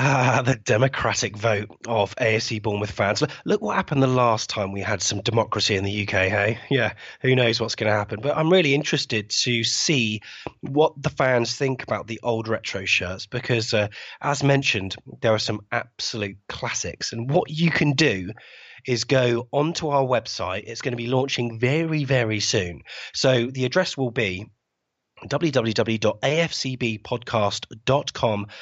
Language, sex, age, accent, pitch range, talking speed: English, male, 30-49, British, 110-140 Hz, 165 wpm